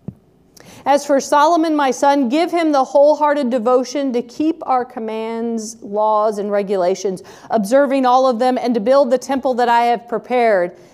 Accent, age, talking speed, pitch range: American, 40-59, 165 wpm, 245-320 Hz